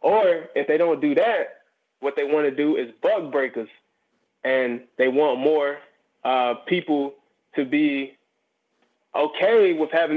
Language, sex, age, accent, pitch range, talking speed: English, male, 20-39, American, 145-200 Hz, 150 wpm